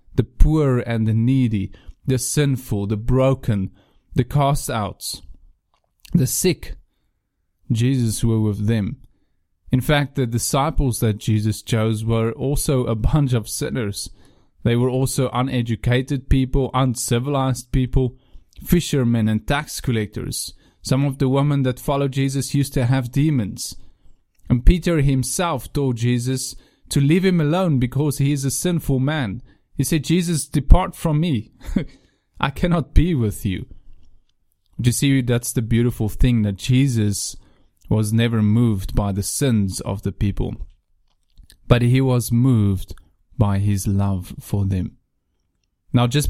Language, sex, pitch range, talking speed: English, male, 100-135 Hz, 135 wpm